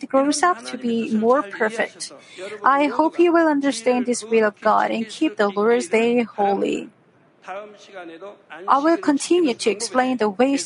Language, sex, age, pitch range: Korean, female, 50-69, 220-300 Hz